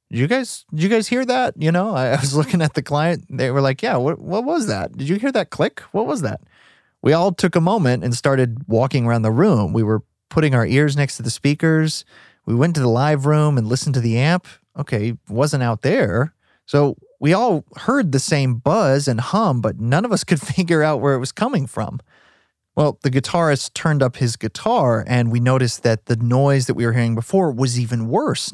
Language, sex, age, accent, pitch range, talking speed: English, male, 30-49, American, 115-155 Hz, 230 wpm